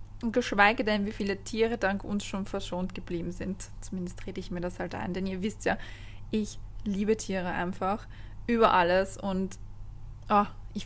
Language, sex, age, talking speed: German, female, 20-39, 170 wpm